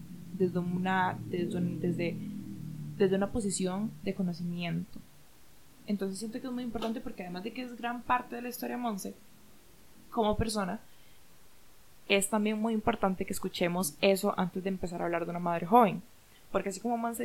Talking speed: 175 wpm